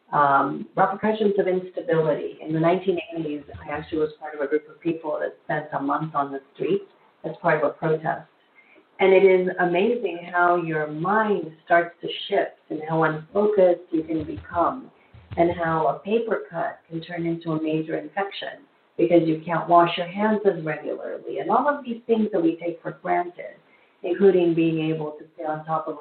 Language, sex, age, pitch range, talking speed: English, female, 40-59, 150-180 Hz, 185 wpm